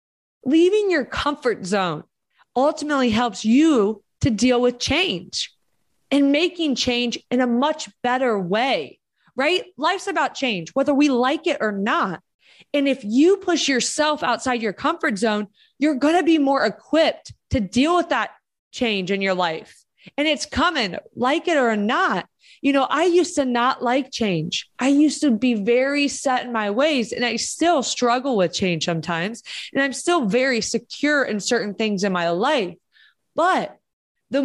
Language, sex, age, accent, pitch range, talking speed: English, female, 20-39, American, 230-320 Hz, 165 wpm